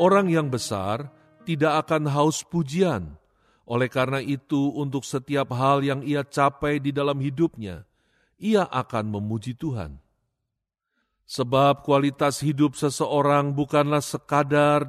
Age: 40-59